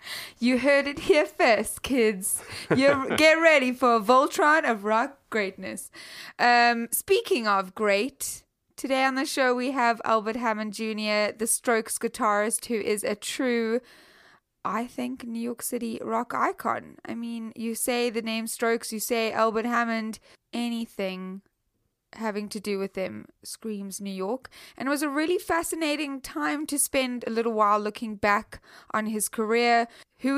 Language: English